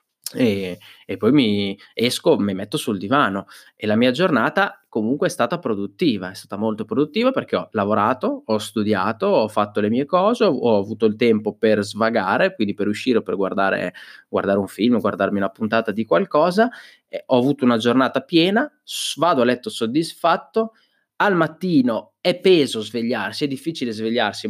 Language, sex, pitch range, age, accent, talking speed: Italian, male, 105-150 Hz, 20-39, native, 165 wpm